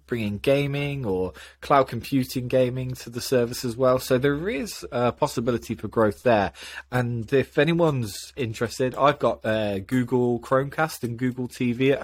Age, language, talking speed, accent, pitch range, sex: 20-39, English, 160 wpm, British, 100-130 Hz, male